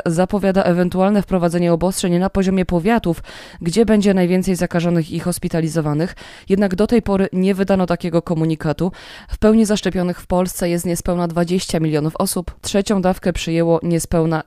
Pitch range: 175-205 Hz